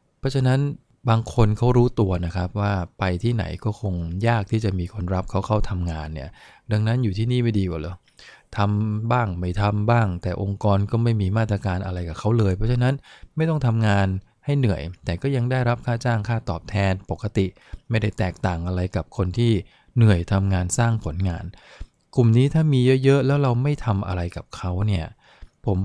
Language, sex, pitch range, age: English, male, 95-115 Hz, 20-39